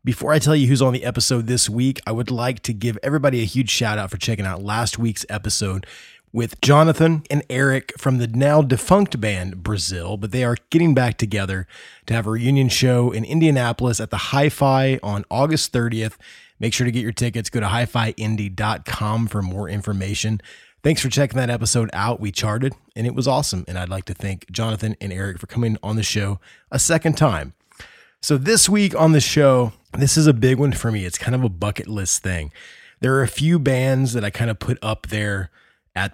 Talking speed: 210 wpm